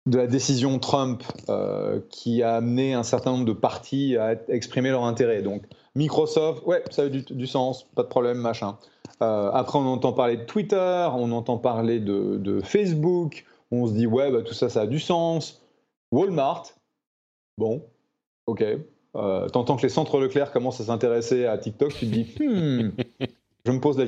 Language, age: French, 30-49